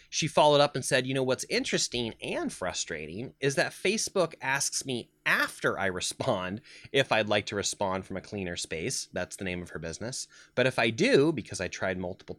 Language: English